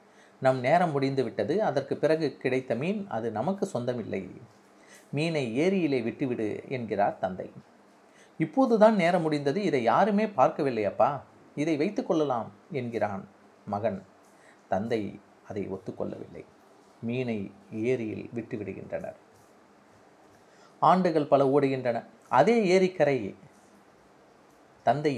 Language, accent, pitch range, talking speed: Tamil, native, 115-170 Hz, 95 wpm